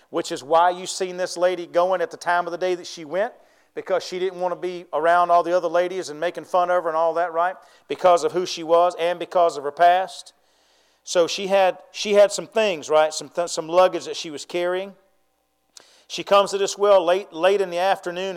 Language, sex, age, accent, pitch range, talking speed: English, male, 40-59, American, 170-200 Hz, 235 wpm